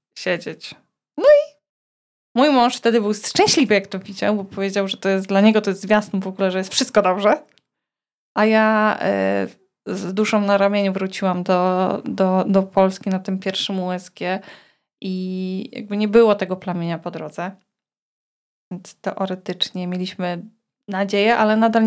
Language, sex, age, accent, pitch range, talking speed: Polish, female, 20-39, native, 190-225 Hz, 155 wpm